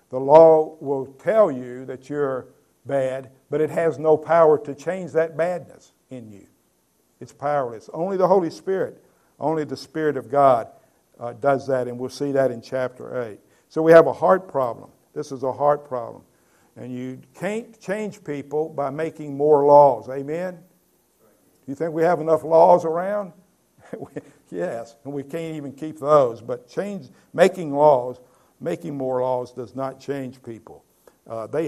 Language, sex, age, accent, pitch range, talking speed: English, male, 60-79, American, 130-160 Hz, 170 wpm